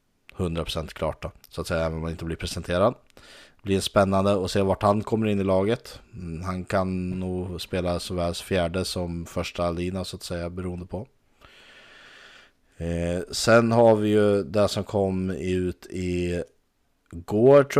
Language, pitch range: Swedish, 85-100 Hz